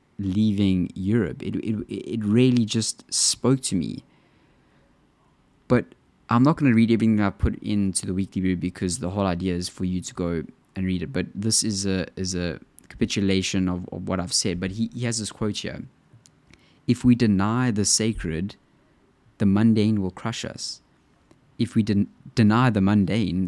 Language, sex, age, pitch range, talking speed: English, male, 20-39, 95-110 Hz, 175 wpm